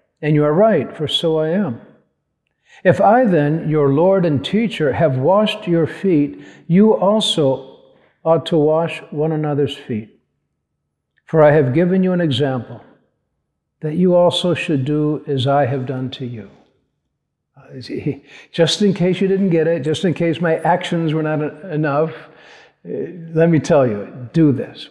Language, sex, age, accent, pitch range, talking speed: English, male, 50-69, American, 140-170 Hz, 160 wpm